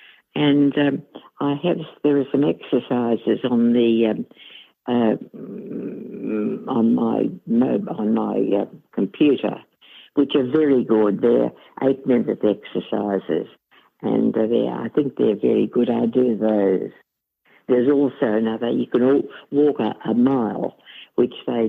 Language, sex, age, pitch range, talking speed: English, female, 60-79, 115-145 Hz, 130 wpm